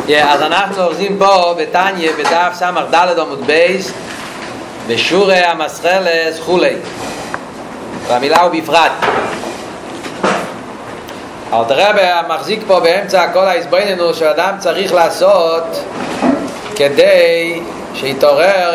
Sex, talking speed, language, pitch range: male, 85 wpm, Hebrew, 165-195 Hz